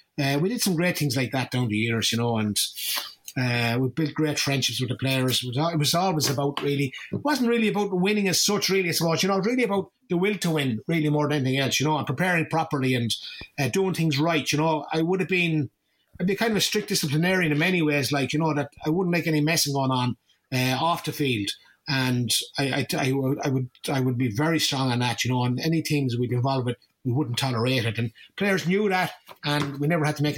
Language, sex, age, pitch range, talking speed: English, male, 30-49, 120-160 Hz, 265 wpm